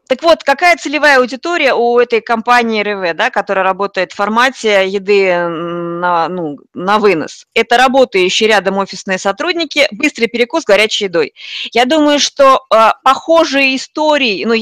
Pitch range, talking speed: 205-280 Hz, 140 wpm